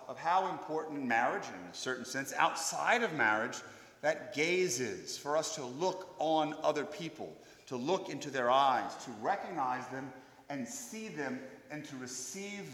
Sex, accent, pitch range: male, American, 125-175 Hz